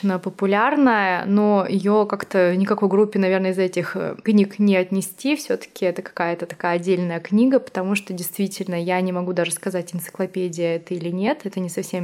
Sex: female